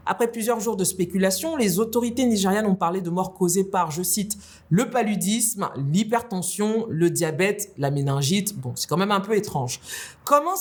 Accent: French